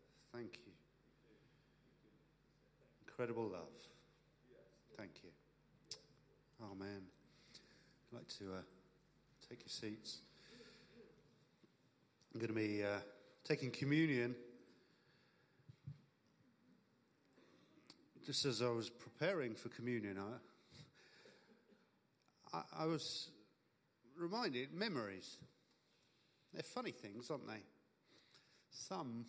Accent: British